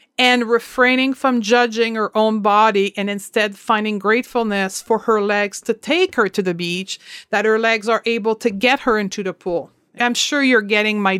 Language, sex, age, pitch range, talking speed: English, female, 40-59, 205-245 Hz, 195 wpm